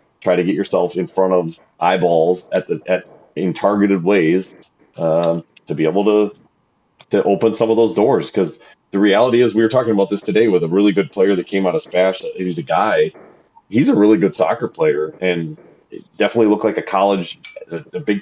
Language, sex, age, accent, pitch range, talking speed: English, male, 30-49, American, 90-110 Hz, 210 wpm